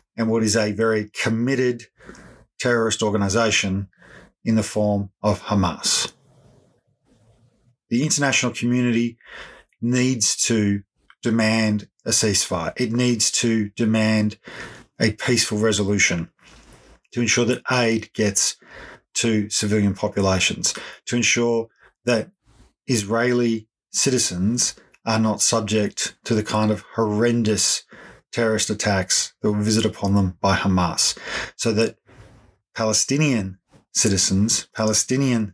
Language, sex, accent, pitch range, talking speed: English, male, Australian, 105-120 Hz, 105 wpm